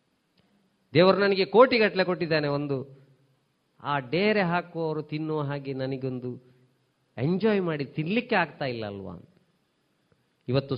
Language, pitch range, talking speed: Kannada, 120-145 Hz, 100 wpm